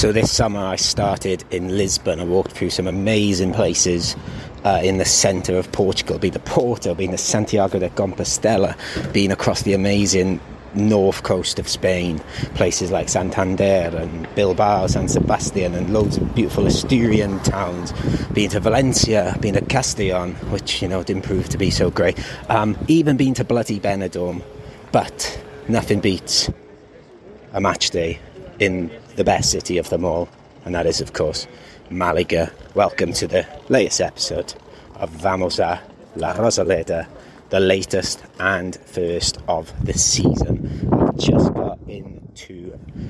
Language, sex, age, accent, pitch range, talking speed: English, male, 30-49, British, 90-110 Hz, 150 wpm